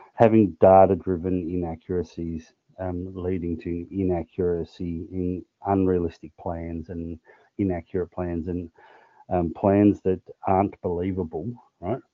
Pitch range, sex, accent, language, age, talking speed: 85-100 Hz, male, Australian, English, 30-49, 100 wpm